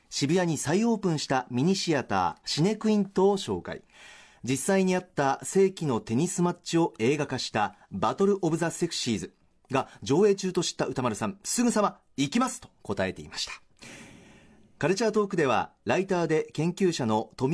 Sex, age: male, 40-59